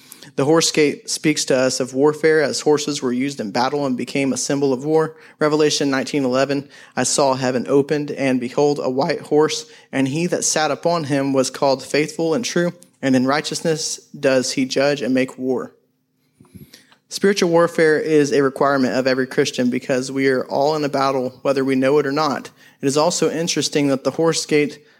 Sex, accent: male, American